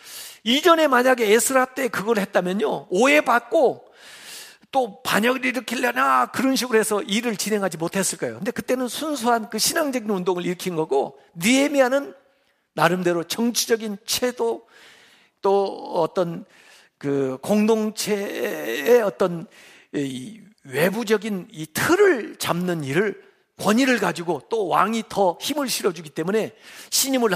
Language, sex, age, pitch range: Korean, male, 50-69, 170-240 Hz